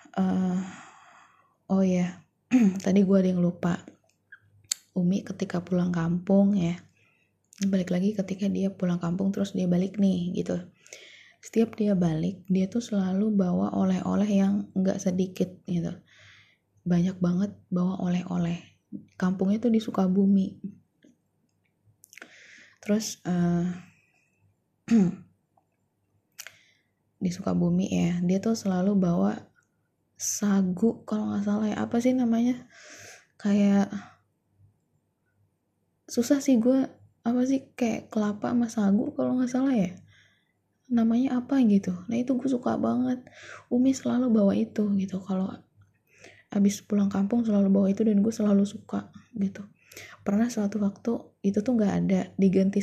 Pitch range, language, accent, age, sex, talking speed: 185-225 Hz, Indonesian, native, 20-39, female, 125 wpm